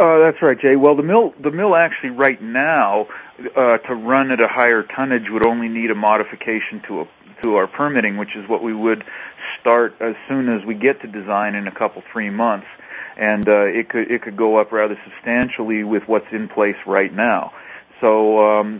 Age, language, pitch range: 40-59, English, 105-125 Hz